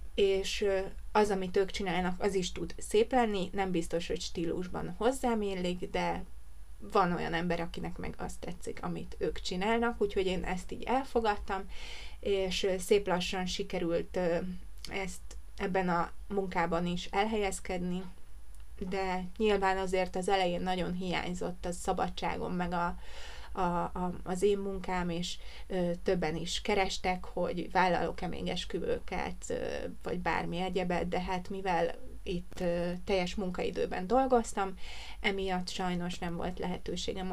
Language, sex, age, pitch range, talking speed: Hungarian, female, 20-39, 175-195 Hz, 120 wpm